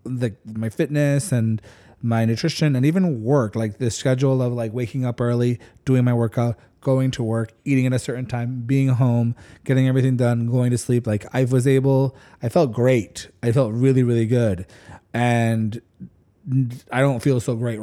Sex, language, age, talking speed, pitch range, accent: male, English, 30-49, 180 wpm, 115-135 Hz, American